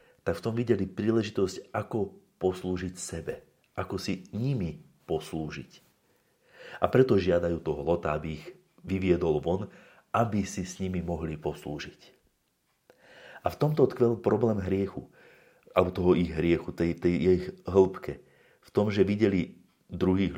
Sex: male